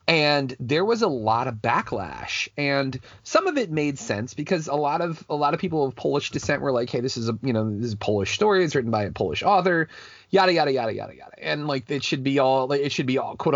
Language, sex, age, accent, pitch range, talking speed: English, male, 30-49, American, 115-155 Hz, 265 wpm